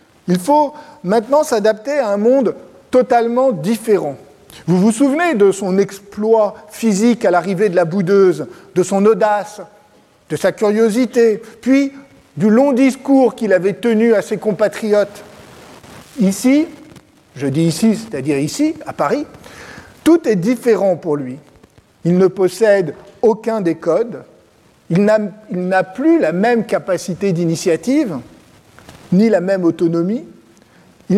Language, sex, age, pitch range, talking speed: French, male, 50-69, 185-245 Hz, 135 wpm